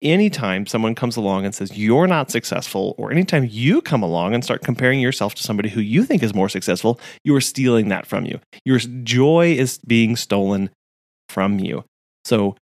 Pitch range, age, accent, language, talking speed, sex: 110-145 Hz, 30-49, American, English, 190 wpm, male